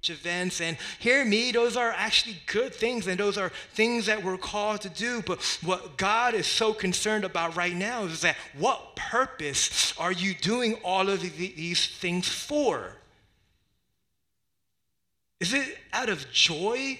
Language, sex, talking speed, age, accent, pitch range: English, male, 160 wpm, 30-49, American, 140-195 Hz